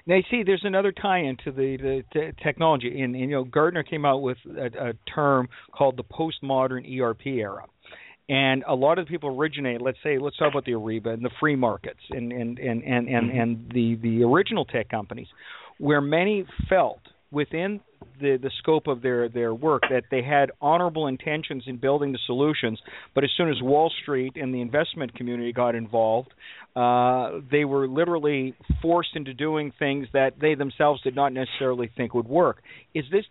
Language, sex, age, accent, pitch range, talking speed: English, male, 50-69, American, 125-155 Hz, 195 wpm